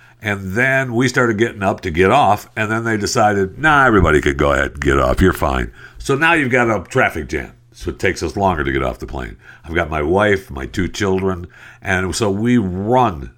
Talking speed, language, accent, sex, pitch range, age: 230 wpm, English, American, male, 75-115 Hz, 60-79